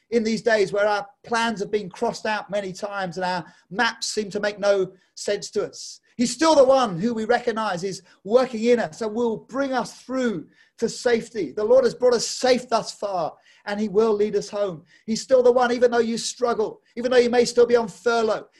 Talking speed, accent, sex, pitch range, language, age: 225 wpm, British, male, 210-250 Hz, English, 30-49